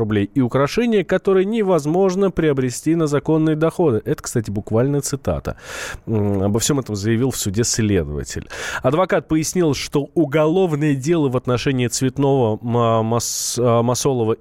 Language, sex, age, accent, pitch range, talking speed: Russian, male, 20-39, native, 120-170 Hz, 115 wpm